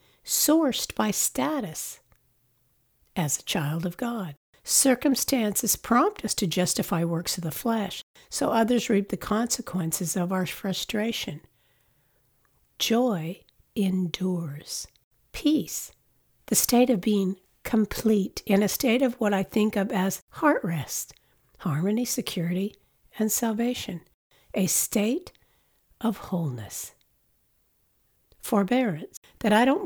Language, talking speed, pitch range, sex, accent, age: English, 115 wpm, 180-235 Hz, female, American, 60-79